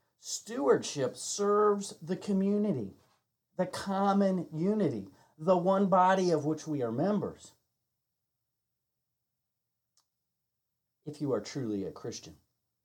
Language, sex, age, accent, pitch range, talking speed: English, male, 40-59, American, 115-185 Hz, 100 wpm